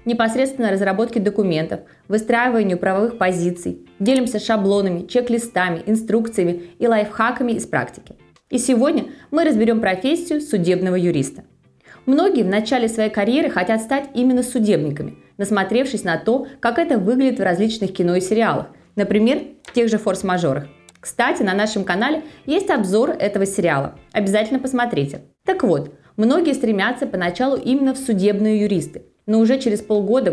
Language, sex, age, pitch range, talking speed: Russian, female, 20-39, 190-250 Hz, 135 wpm